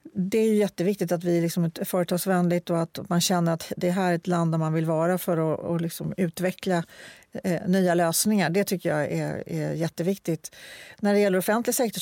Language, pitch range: Swedish, 175-195 Hz